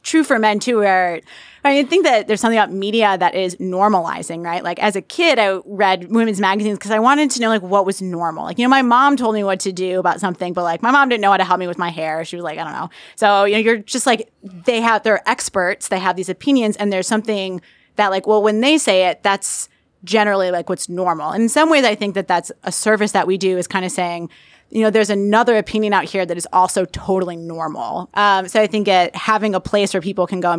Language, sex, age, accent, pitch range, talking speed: English, female, 20-39, American, 180-215 Hz, 265 wpm